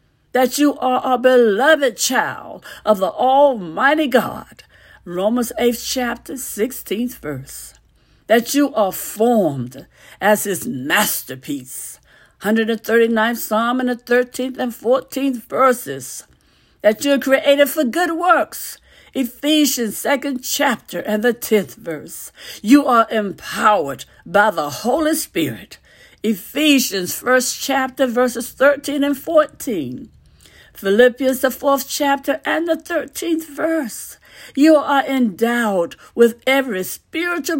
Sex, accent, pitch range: female, American, 215-285 Hz